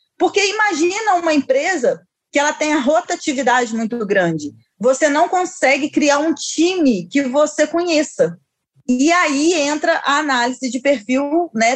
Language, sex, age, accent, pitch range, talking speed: Portuguese, female, 20-39, Brazilian, 240-315 Hz, 145 wpm